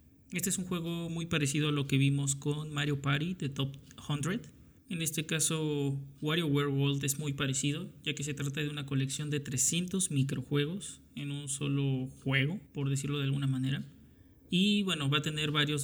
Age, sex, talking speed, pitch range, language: 20-39, male, 180 wpm, 135-150 Hz, Spanish